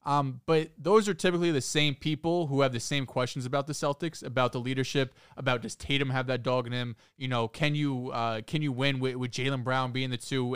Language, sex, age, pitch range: English, male, 20-39, 120-150 Hz